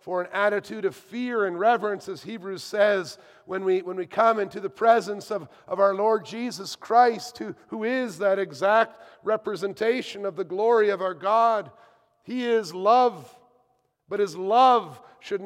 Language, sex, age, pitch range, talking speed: English, male, 50-69, 155-200 Hz, 165 wpm